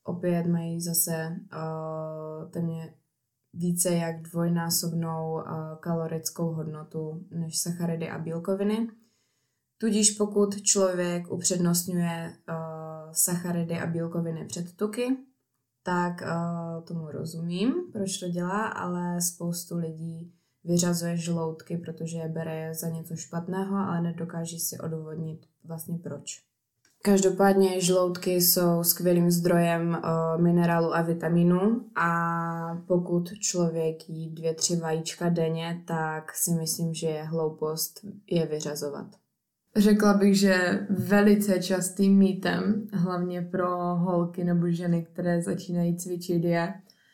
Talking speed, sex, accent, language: 115 wpm, female, native, Czech